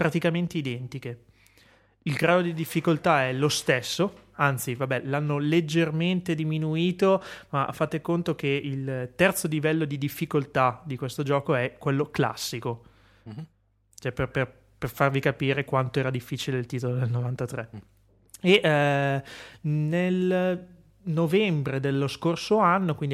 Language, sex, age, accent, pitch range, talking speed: Italian, male, 30-49, native, 125-155 Hz, 125 wpm